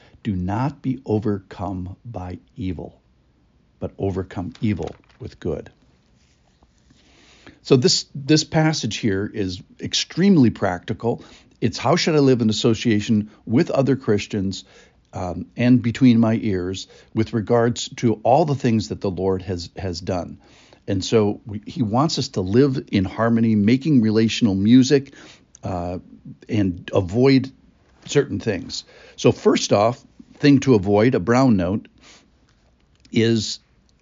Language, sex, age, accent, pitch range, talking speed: English, male, 60-79, American, 100-130 Hz, 130 wpm